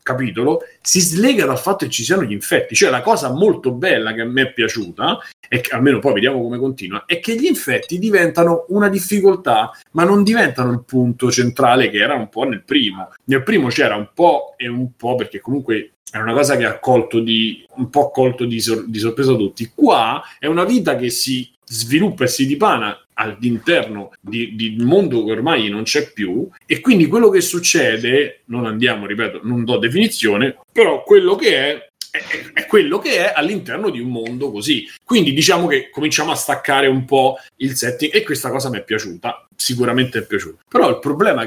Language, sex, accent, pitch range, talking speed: Italian, male, native, 115-170 Hz, 195 wpm